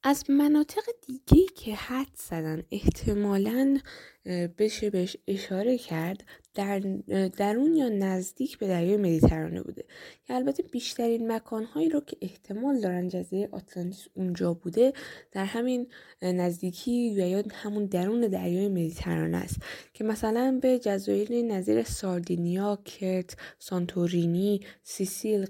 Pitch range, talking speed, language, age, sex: 185-250 Hz, 115 wpm, Persian, 10-29, female